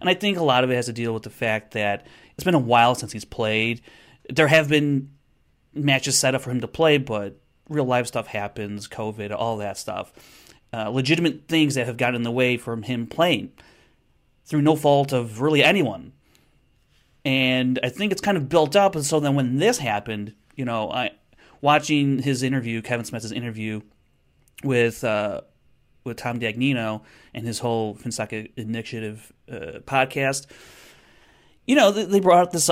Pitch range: 110-140 Hz